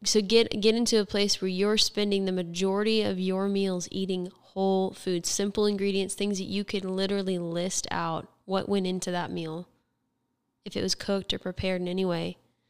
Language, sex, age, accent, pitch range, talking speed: English, female, 10-29, American, 180-205 Hz, 190 wpm